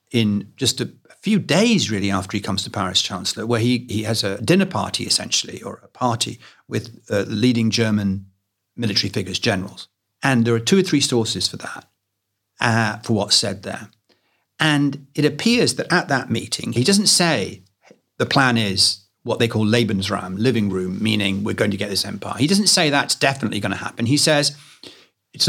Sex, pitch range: male, 105-150 Hz